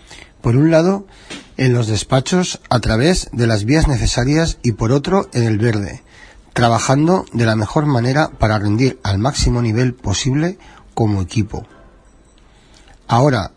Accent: Spanish